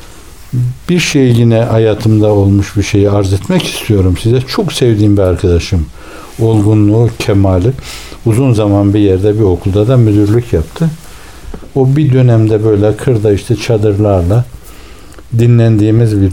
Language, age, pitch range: Turkish, 60-79, 100-130 Hz